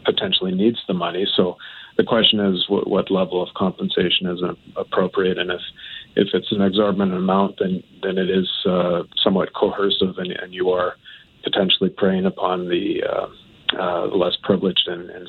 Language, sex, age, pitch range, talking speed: English, male, 50-69, 90-100 Hz, 165 wpm